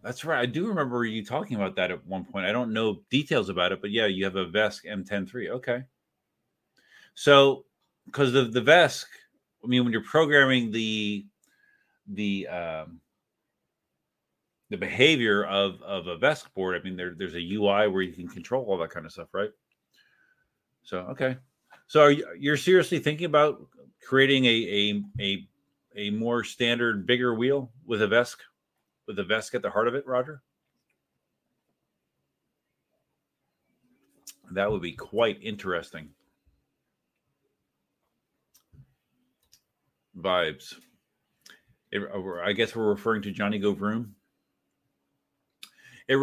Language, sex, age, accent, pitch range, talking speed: English, male, 30-49, American, 105-140 Hz, 140 wpm